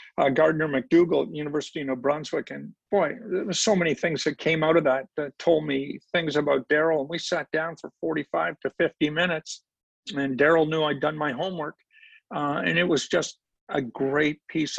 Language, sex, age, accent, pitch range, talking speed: English, male, 50-69, American, 135-160 Hz, 205 wpm